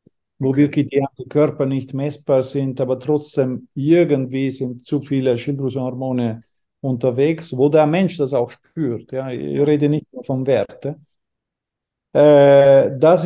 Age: 50-69